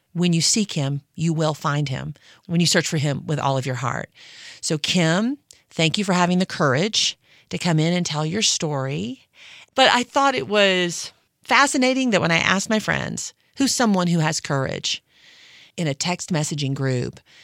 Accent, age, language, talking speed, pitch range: American, 40-59, English, 190 wpm, 135-175 Hz